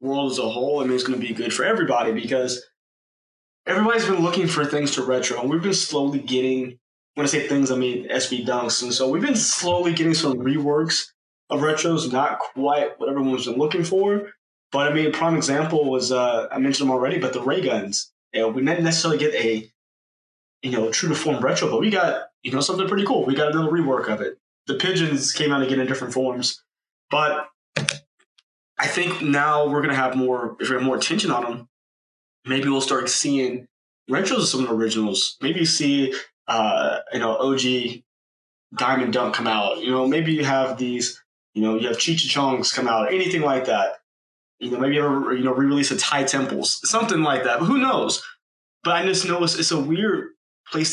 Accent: American